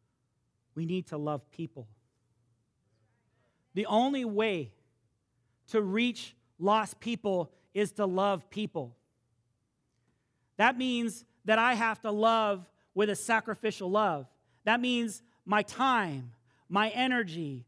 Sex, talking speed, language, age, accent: male, 110 wpm, English, 40-59, American